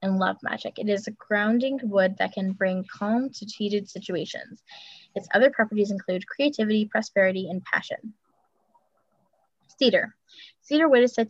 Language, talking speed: English, 150 wpm